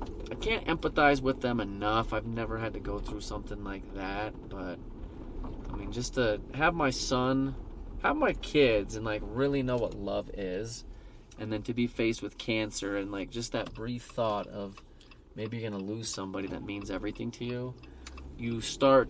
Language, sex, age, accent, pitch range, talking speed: English, male, 30-49, American, 105-125 Hz, 185 wpm